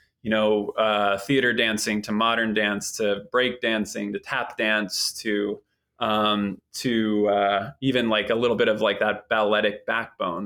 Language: English